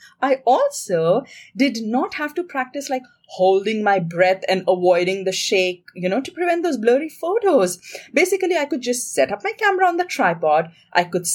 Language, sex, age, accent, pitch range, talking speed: English, female, 30-49, Indian, 195-305 Hz, 185 wpm